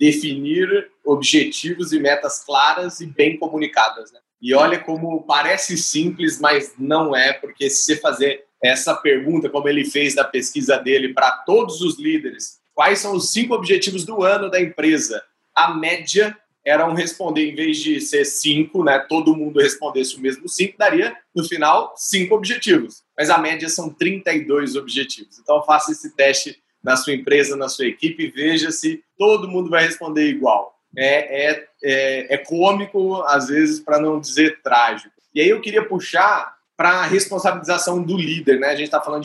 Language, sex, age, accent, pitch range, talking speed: Portuguese, male, 30-49, Brazilian, 150-200 Hz, 170 wpm